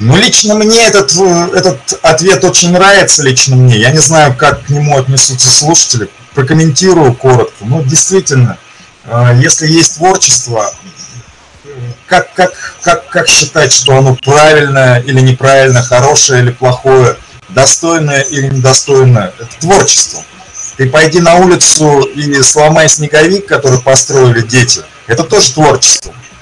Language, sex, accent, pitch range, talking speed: Russian, male, native, 130-170 Hz, 125 wpm